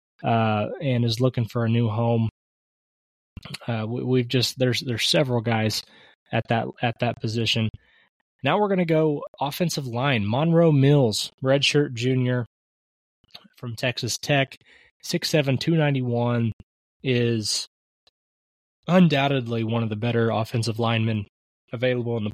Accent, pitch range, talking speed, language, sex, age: American, 110-130 Hz, 135 wpm, English, male, 20-39